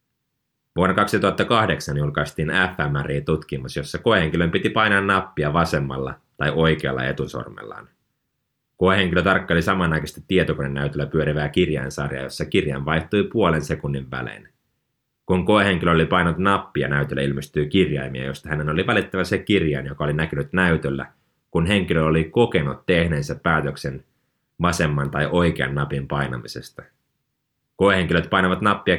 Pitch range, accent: 70-95 Hz, native